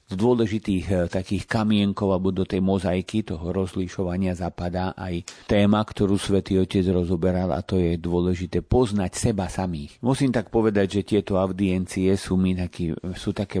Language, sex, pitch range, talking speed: Slovak, male, 90-100 Hz, 155 wpm